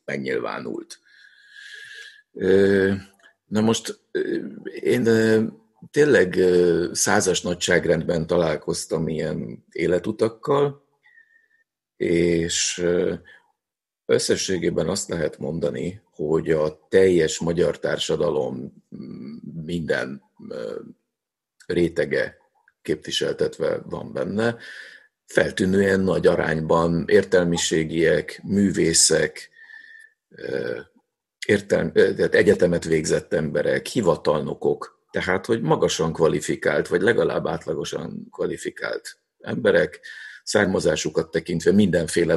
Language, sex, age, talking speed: Hungarian, male, 50-69, 70 wpm